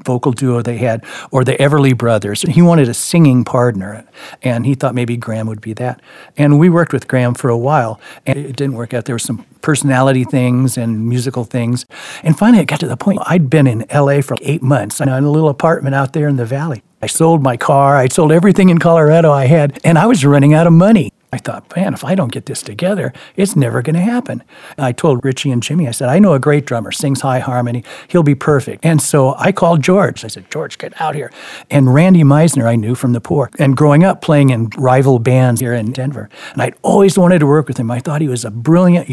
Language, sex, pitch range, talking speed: English, male, 125-160 Hz, 245 wpm